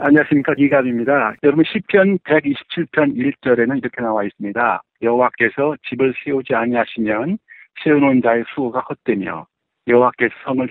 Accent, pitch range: native, 115-155 Hz